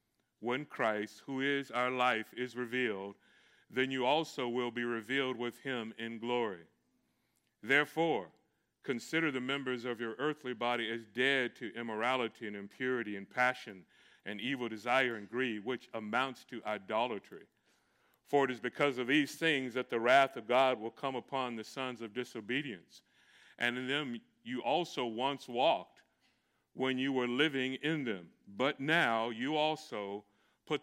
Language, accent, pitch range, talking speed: English, American, 115-135 Hz, 155 wpm